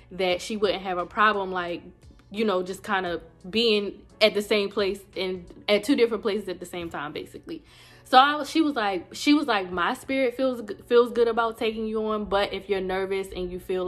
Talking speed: 225 wpm